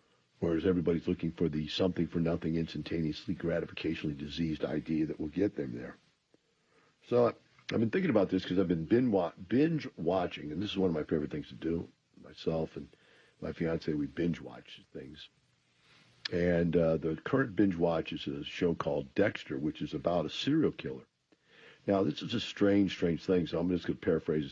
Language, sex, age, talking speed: English, male, 60-79, 175 wpm